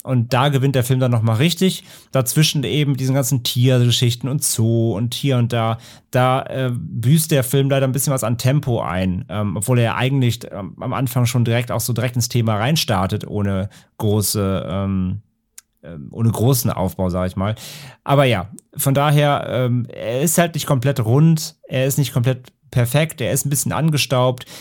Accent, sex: German, male